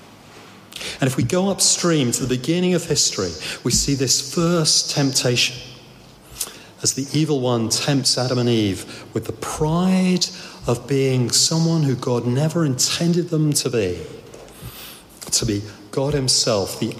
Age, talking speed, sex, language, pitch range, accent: 40-59, 145 wpm, male, English, 115-145 Hz, British